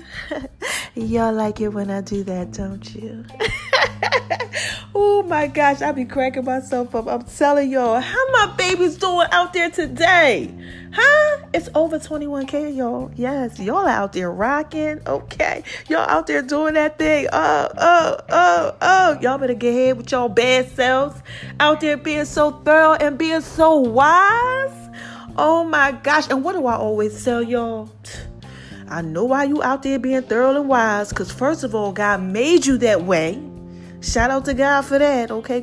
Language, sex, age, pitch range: English, female, 30-49, 230-315 Hz